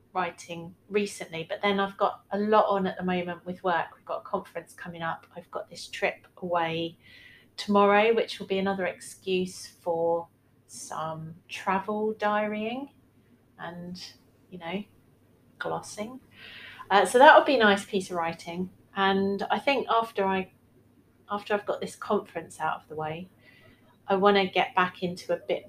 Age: 30-49